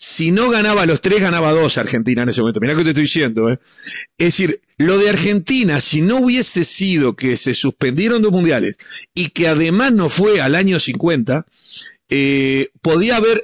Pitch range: 145-195 Hz